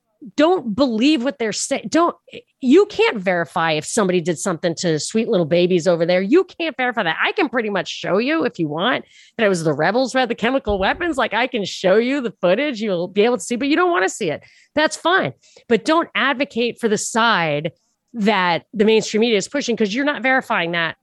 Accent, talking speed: American, 230 wpm